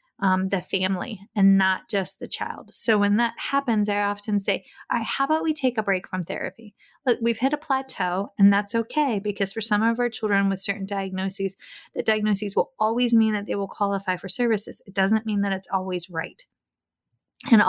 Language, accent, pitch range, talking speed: English, American, 190-225 Hz, 195 wpm